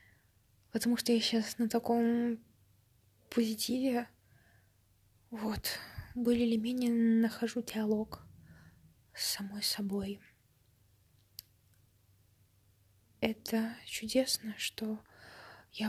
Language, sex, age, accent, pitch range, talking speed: Russian, female, 20-39, native, 200-230 Hz, 75 wpm